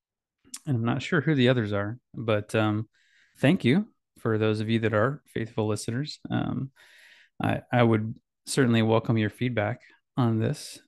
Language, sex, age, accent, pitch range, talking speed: English, male, 20-39, American, 110-130 Hz, 165 wpm